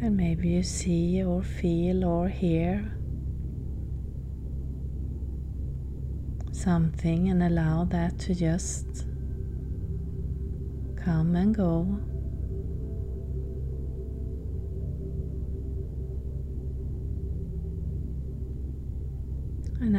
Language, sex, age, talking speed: English, female, 30-49, 55 wpm